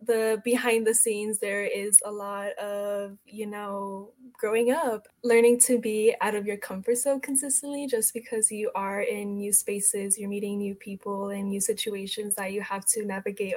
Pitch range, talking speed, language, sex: 205-245 Hz, 180 wpm, English, female